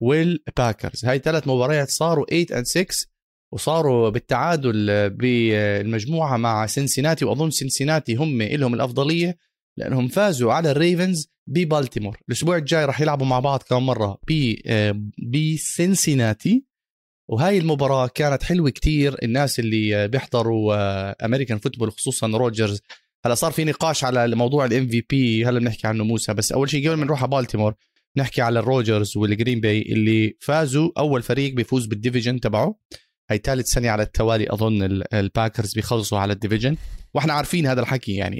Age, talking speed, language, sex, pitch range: 30-49, 145 wpm, Arabic, male, 110-150 Hz